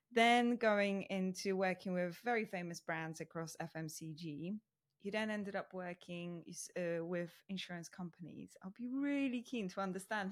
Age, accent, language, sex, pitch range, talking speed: 20-39, British, English, female, 175-210 Hz, 145 wpm